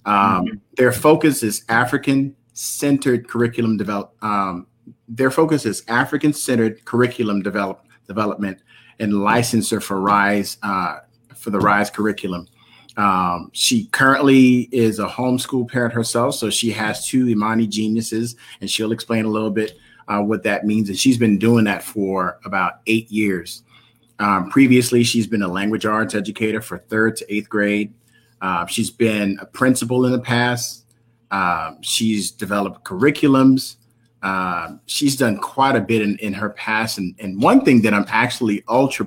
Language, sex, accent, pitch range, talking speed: English, male, American, 105-120 Hz, 155 wpm